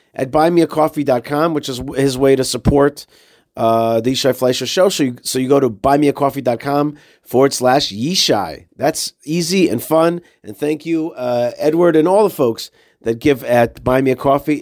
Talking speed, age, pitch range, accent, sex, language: 175 wpm, 40-59, 120-150 Hz, American, male, English